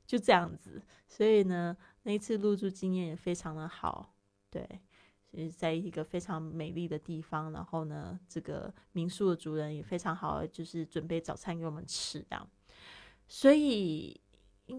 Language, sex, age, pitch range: Chinese, female, 20-39, 160-190 Hz